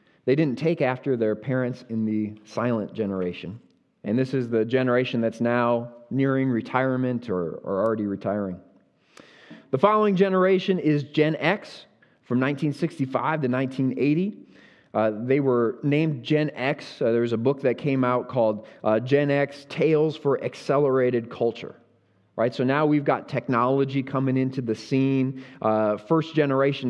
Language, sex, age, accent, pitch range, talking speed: English, male, 30-49, American, 120-145 Hz, 150 wpm